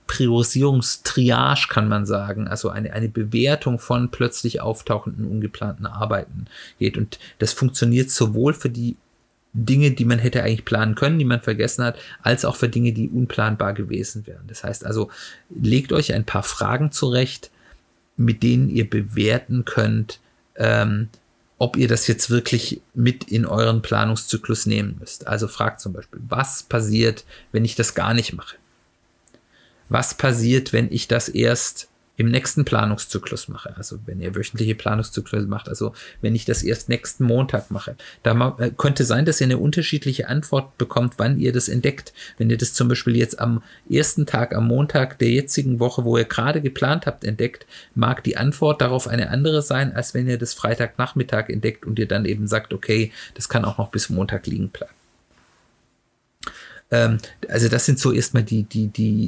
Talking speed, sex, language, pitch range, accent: 170 wpm, male, German, 110-125 Hz, German